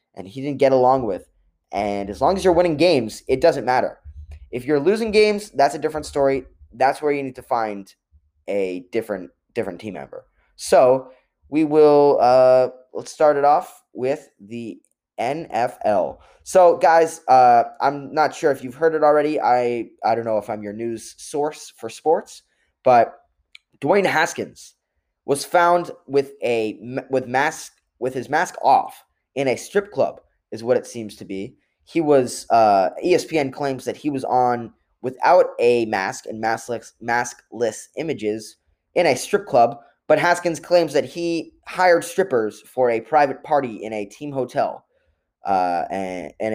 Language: English